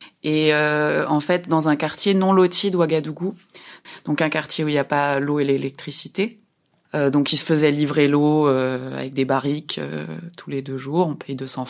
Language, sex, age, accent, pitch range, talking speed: French, female, 20-39, French, 140-160 Hz, 205 wpm